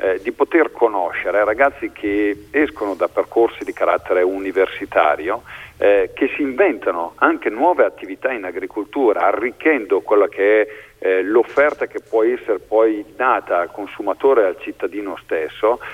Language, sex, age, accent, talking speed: Italian, male, 50-69, native, 145 wpm